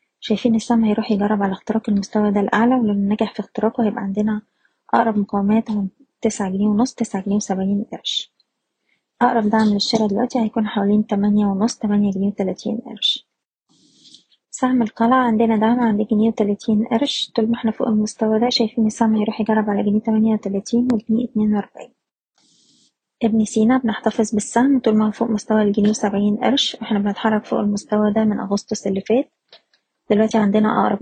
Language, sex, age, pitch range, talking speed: Arabic, female, 20-39, 210-230 Hz, 165 wpm